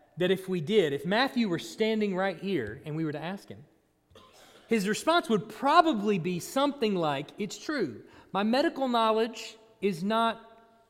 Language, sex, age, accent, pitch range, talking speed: English, male, 40-59, American, 170-245 Hz, 165 wpm